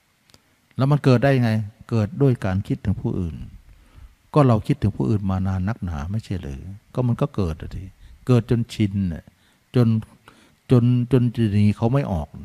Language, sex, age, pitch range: Thai, male, 60-79, 95-125 Hz